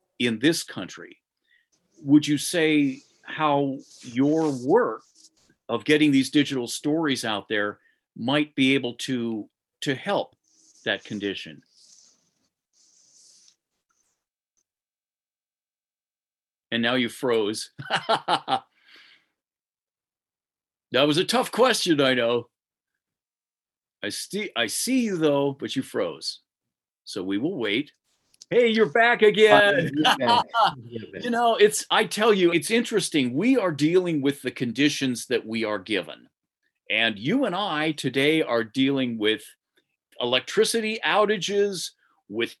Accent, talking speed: American, 115 wpm